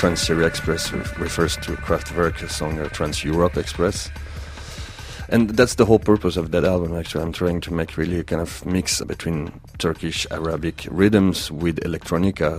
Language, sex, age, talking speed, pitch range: English, male, 40-59, 160 wpm, 80-100 Hz